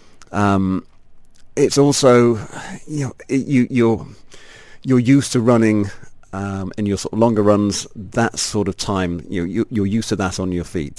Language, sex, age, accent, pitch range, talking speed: English, male, 40-59, British, 85-115 Hz, 175 wpm